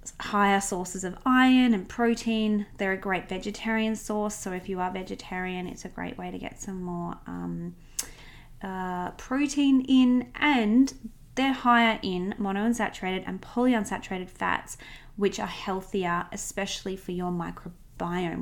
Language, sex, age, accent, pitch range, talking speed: English, female, 20-39, Australian, 185-235 Hz, 145 wpm